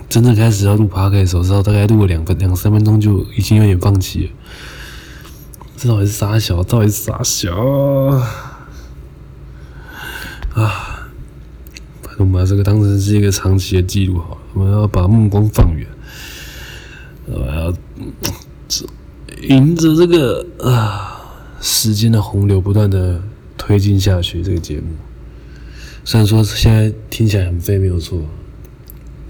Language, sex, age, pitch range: Chinese, male, 20-39, 90-105 Hz